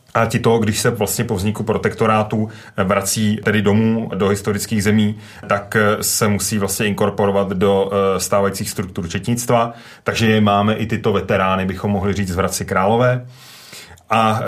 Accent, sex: native, male